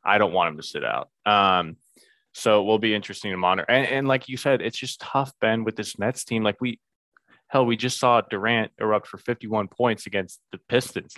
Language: English